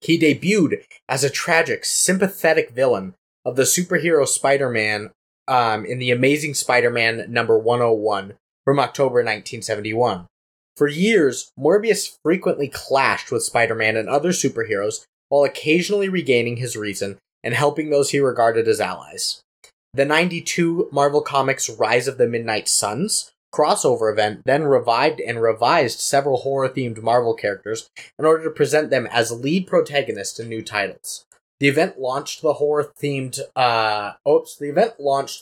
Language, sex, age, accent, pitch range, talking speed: English, male, 20-39, American, 115-180 Hz, 140 wpm